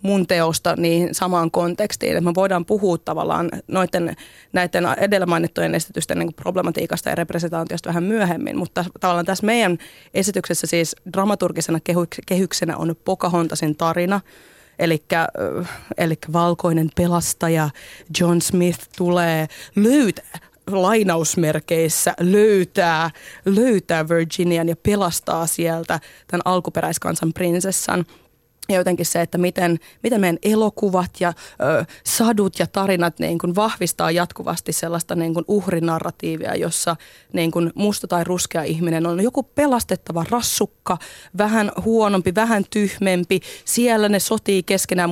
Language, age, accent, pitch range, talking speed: Finnish, 30-49, native, 170-195 Hz, 115 wpm